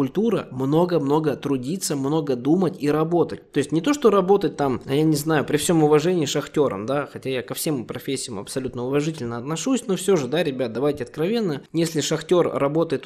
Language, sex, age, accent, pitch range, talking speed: Russian, male, 20-39, native, 140-175 Hz, 190 wpm